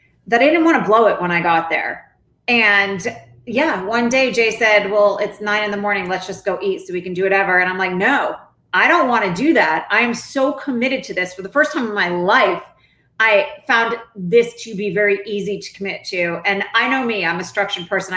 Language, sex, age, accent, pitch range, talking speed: English, female, 30-49, American, 185-235 Hz, 240 wpm